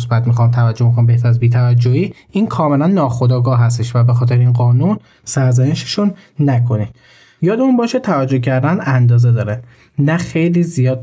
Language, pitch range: Persian, 120-140 Hz